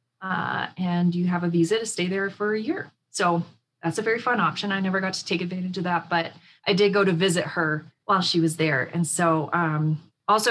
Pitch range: 170-190 Hz